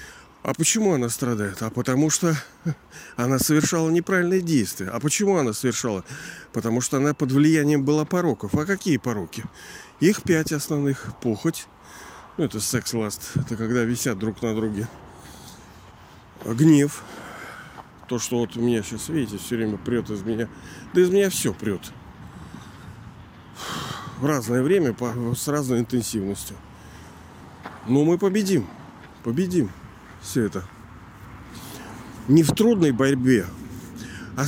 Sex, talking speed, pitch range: male, 125 wpm, 110-150 Hz